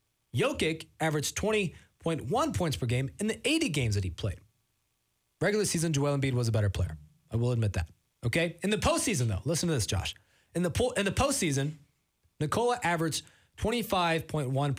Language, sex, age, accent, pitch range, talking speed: English, male, 20-39, American, 120-175 Hz, 165 wpm